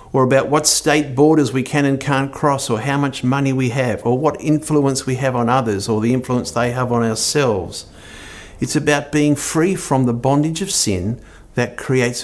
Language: English